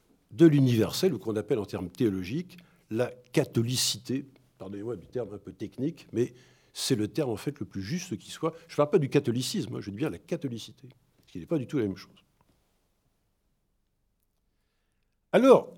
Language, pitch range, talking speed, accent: French, 105-160 Hz, 185 wpm, French